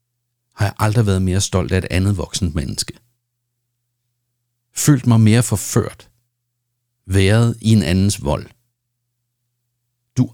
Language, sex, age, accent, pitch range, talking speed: Danish, male, 60-79, native, 100-120 Hz, 120 wpm